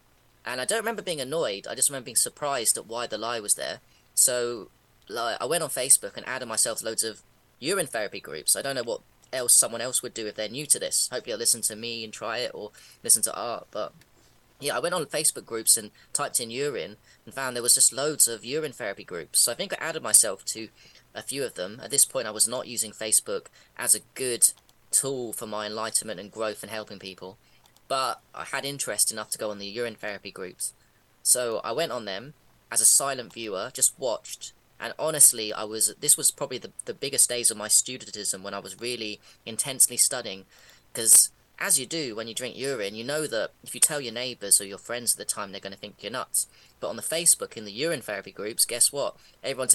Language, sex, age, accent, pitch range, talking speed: English, female, 20-39, British, 105-125 Hz, 230 wpm